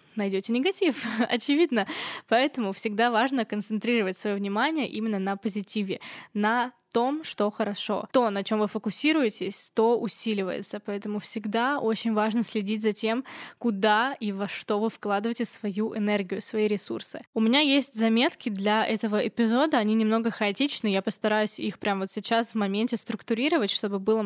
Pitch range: 210-240 Hz